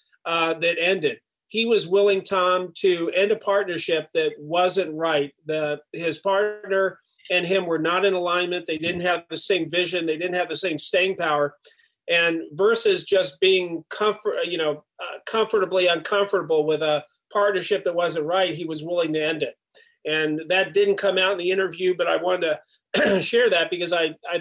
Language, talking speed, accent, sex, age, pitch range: English, 185 wpm, American, male, 40-59, 160-200 Hz